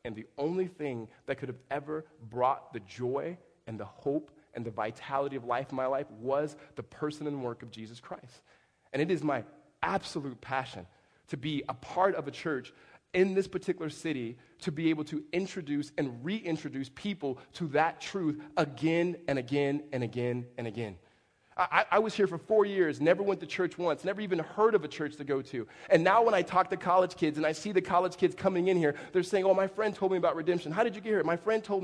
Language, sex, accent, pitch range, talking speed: English, male, American, 140-190 Hz, 225 wpm